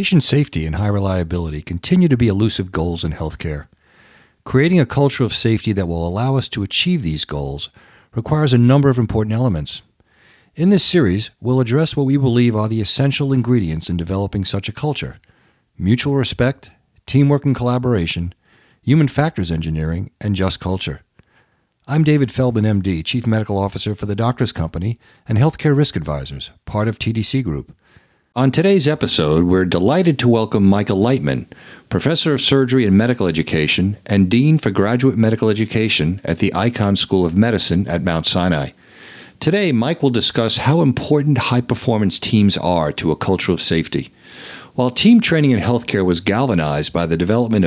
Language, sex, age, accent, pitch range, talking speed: English, male, 50-69, American, 95-135 Hz, 165 wpm